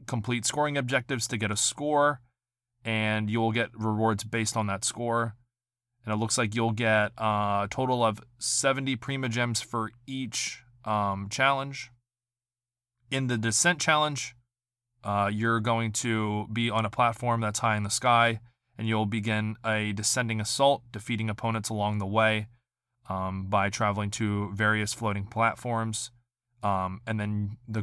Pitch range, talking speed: 105-120 Hz, 150 wpm